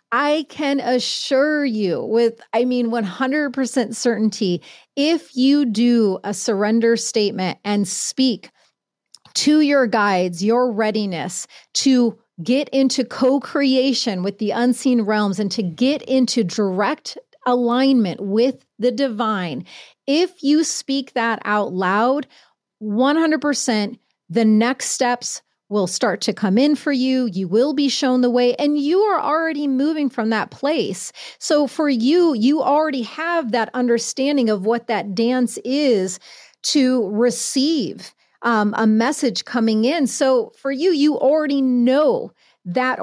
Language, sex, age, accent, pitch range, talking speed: English, female, 30-49, American, 225-285 Hz, 135 wpm